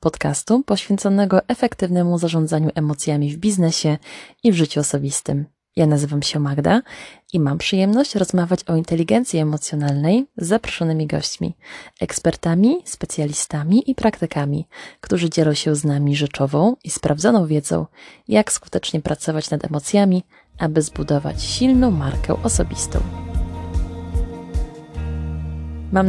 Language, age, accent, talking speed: Polish, 20-39, native, 115 wpm